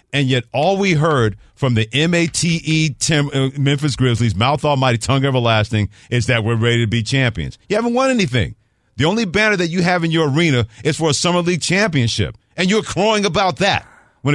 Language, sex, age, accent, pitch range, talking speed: English, male, 40-59, American, 120-175 Hz, 200 wpm